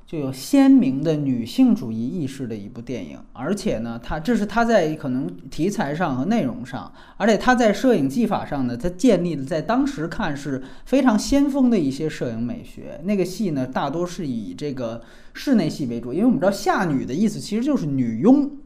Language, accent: Chinese, native